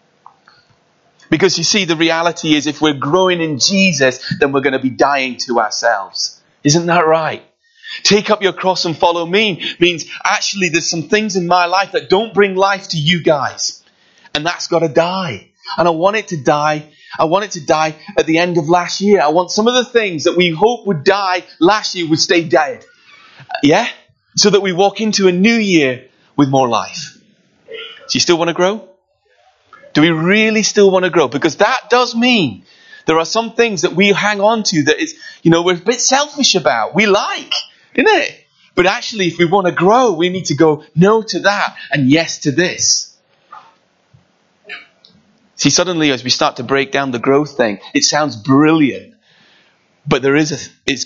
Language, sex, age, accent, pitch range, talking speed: English, male, 30-49, British, 155-205 Hz, 200 wpm